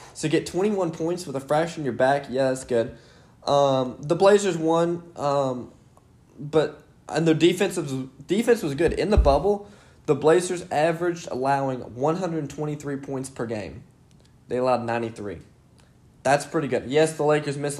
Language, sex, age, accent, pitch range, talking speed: English, male, 10-29, American, 125-155 Hz, 155 wpm